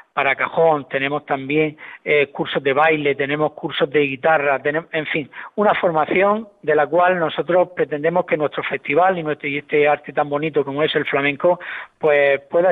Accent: Spanish